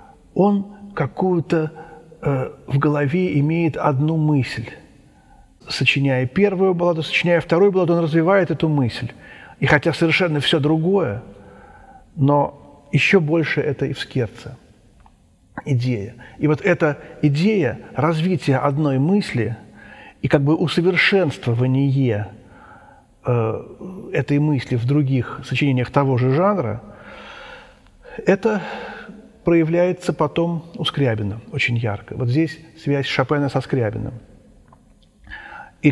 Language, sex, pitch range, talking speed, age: Russian, male, 130-170 Hz, 110 wpm, 50-69